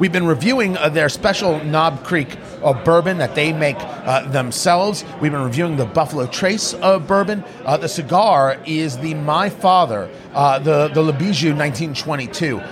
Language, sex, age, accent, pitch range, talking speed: English, male, 30-49, American, 135-170 Hz, 170 wpm